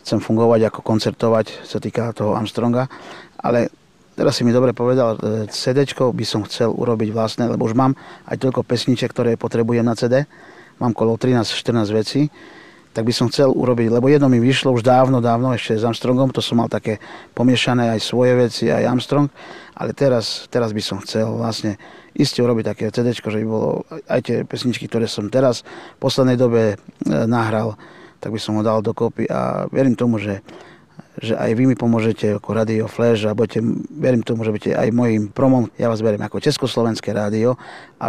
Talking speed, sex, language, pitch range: 185 wpm, male, Czech, 110-125 Hz